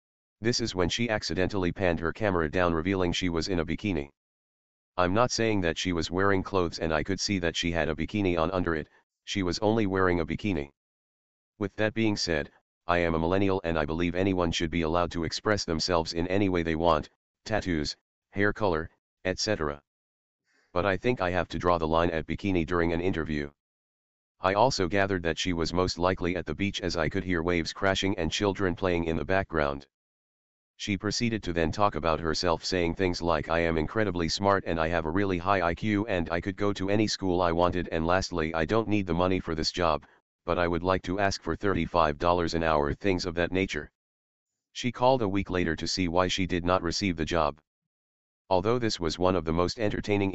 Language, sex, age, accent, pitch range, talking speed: English, male, 40-59, American, 80-95 Hz, 215 wpm